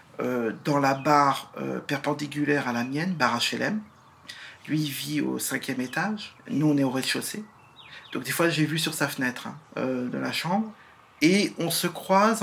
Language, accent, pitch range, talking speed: French, French, 135-170 Hz, 190 wpm